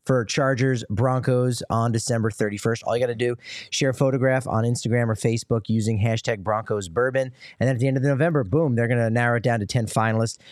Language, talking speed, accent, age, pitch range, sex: English, 220 wpm, American, 30-49, 115-145 Hz, male